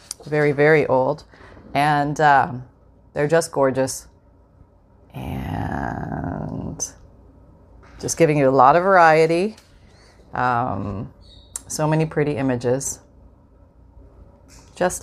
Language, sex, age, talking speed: English, female, 30-49, 90 wpm